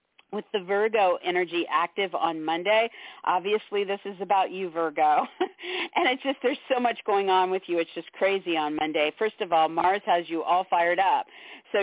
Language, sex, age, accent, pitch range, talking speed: English, female, 50-69, American, 170-210 Hz, 195 wpm